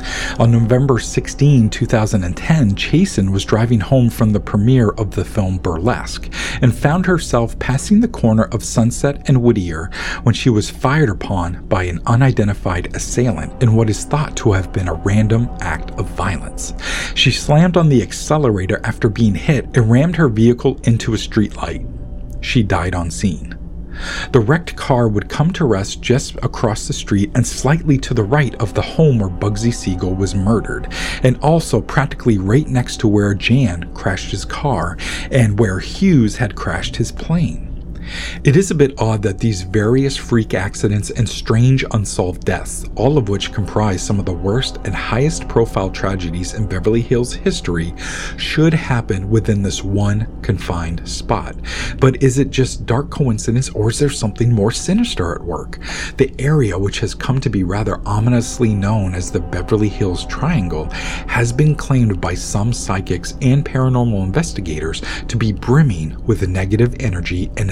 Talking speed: 170 wpm